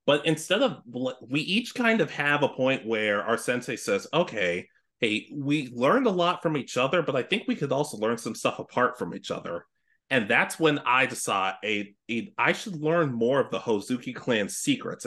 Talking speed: 205 wpm